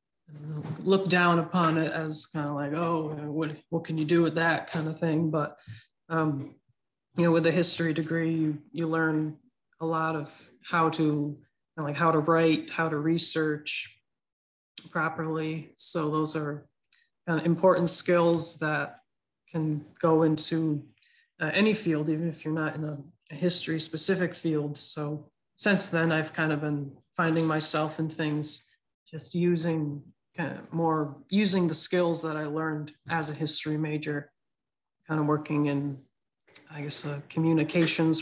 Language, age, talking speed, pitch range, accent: English, 20-39, 160 wpm, 150-165 Hz, American